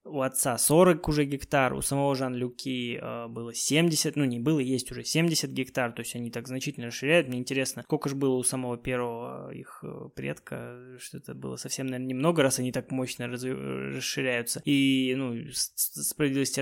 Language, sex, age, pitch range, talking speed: Russian, male, 20-39, 125-150 Hz, 175 wpm